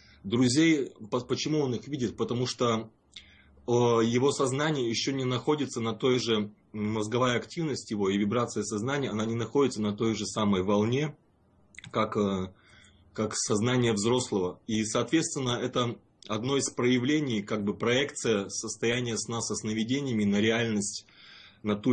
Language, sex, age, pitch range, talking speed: Russian, male, 20-39, 105-125 Hz, 135 wpm